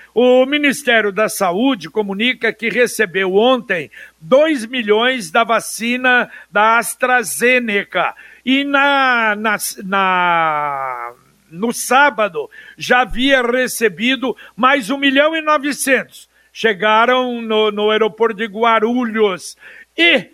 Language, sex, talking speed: Portuguese, male, 105 wpm